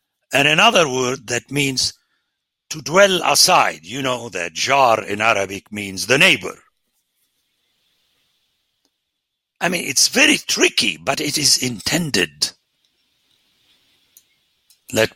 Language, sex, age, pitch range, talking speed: English, male, 60-79, 110-160 Hz, 105 wpm